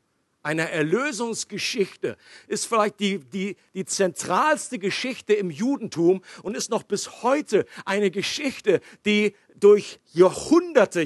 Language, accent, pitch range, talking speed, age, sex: German, German, 190-255 Hz, 115 wpm, 50-69, male